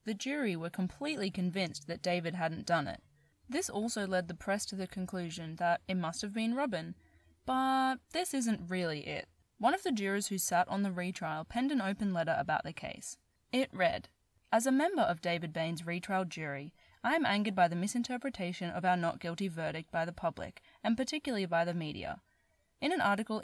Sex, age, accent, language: female, 10-29, Australian, English